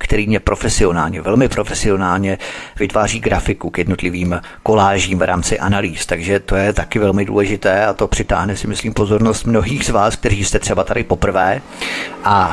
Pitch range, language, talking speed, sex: 95-110 Hz, Czech, 165 wpm, male